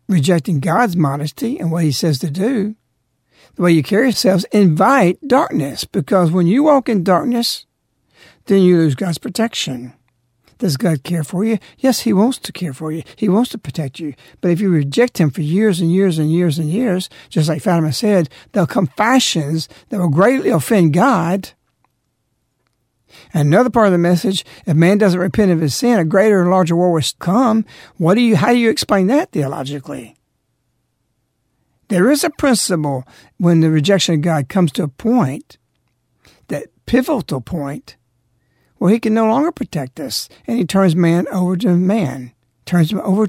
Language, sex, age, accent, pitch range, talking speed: English, male, 60-79, American, 155-210 Hz, 180 wpm